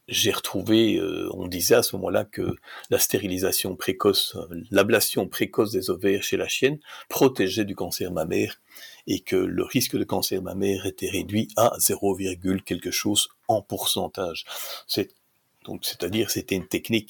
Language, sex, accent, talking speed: French, male, French, 155 wpm